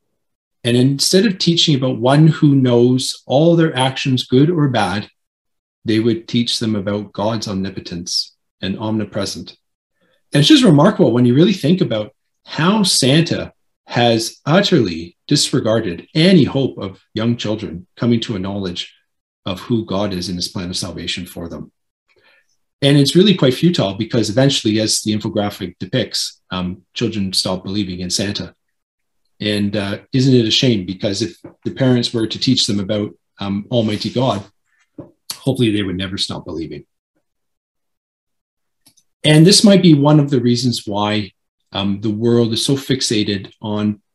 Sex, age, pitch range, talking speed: male, 40-59, 100-135 Hz, 155 wpm